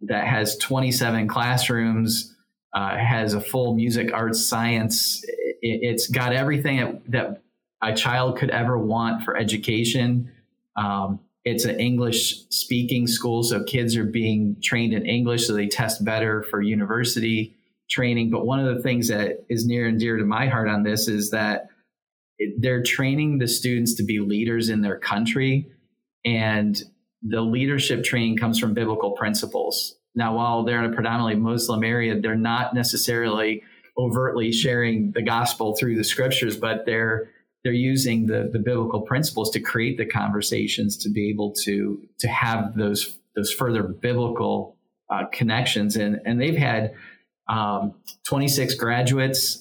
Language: English